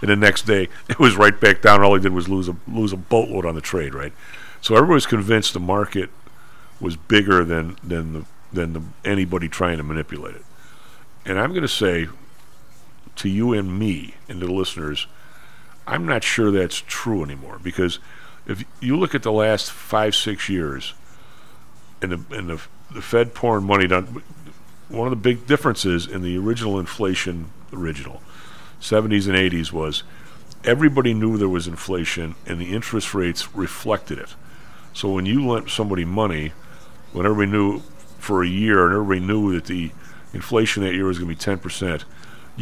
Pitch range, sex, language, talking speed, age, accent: 85-110 Hz, male, English, 180 wpm, 50-69, American